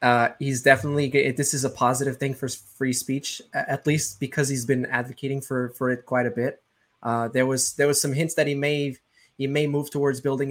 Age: 20-39